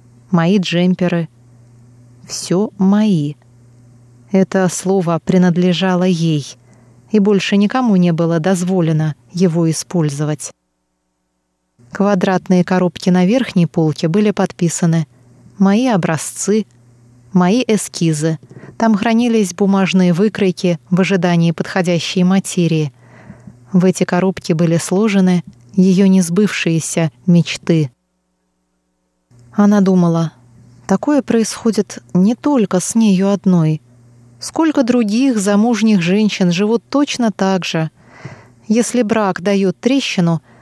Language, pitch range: Russian, 150-200 Hz